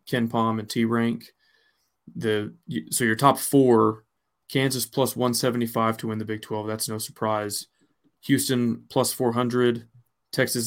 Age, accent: 20-39, American